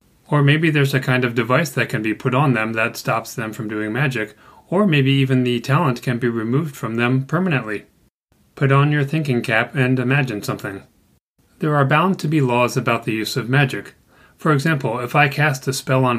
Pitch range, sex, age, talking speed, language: 120-140 Hz, male, 30-49, 210 wpm, English